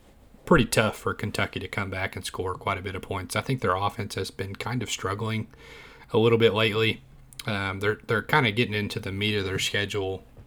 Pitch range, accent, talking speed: 95-115 Hz, American, 220 wpm